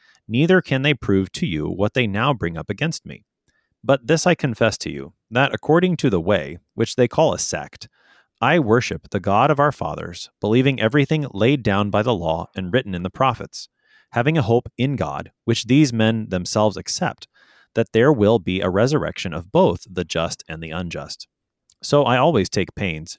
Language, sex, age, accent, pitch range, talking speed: English, male, 30-49, American, 95-130 Hz, 195 wpm